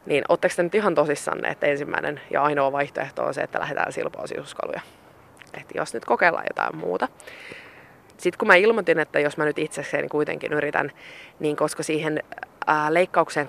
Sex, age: female, 20-39